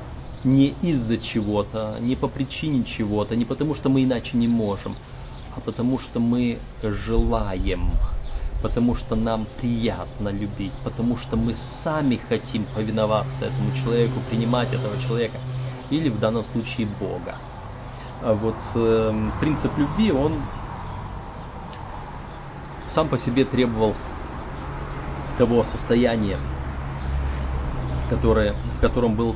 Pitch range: 100-130 Hz